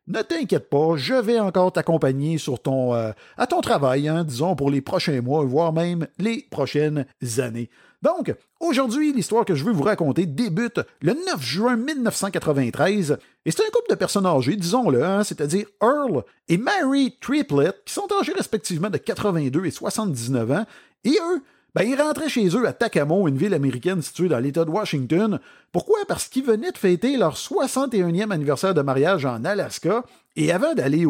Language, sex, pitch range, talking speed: French, male, 140-235 Hz, 175 wpm